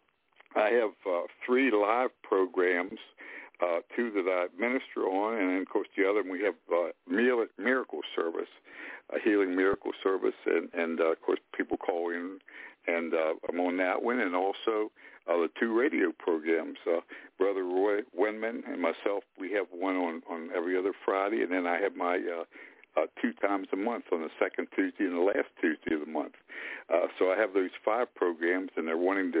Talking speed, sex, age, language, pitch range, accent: 200 wpm, male, 60-79, English, 90-140 Hz, American